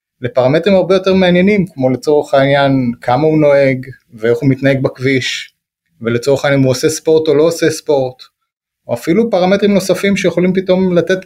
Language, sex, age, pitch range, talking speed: Hebrew, male, 30-49, 130-175 Hz, 165 wpm